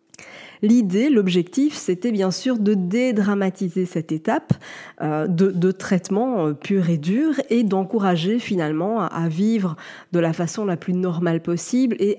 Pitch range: 175-230 Hz